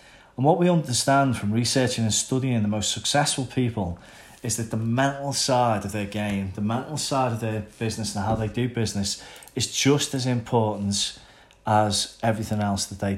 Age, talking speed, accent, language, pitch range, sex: 30-49, 180 wpm, British, English, 105-125 Hz, male